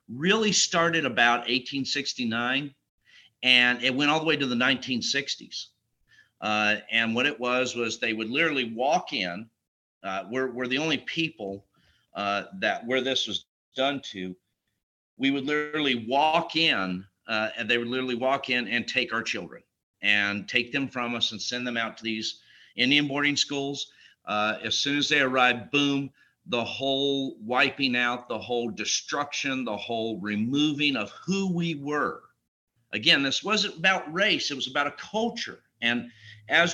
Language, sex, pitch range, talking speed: English, male, 115-140 Hz, 165 wpm